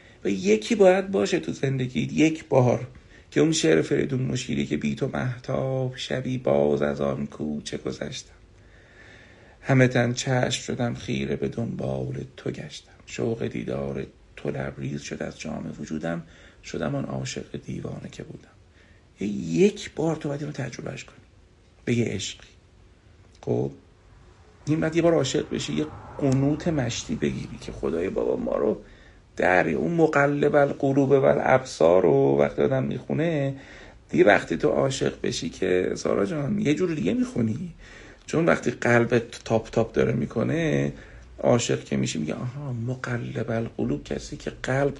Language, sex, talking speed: Persian, male, 145 wpm